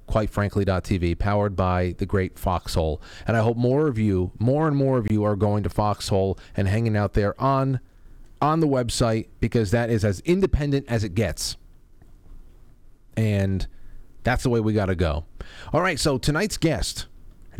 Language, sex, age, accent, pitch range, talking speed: English, male, 30-49, American, 95-130 Hz, 180 wpm